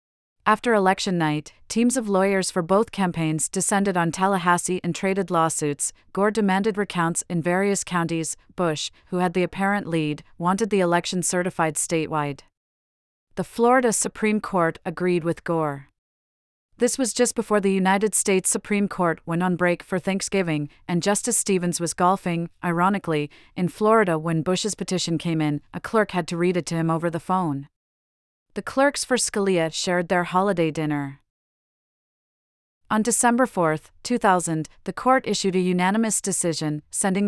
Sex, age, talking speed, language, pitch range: female, 40-59, 155 wpm, English, 165-200 Hz